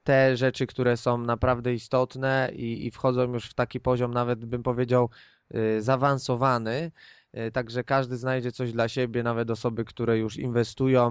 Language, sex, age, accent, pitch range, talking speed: Polish, male, 20-39, native, 115-130 Hz, 150 wpm